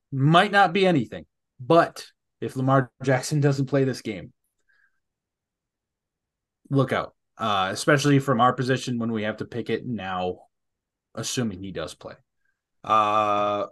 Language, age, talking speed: English, 20-39, 135 wpm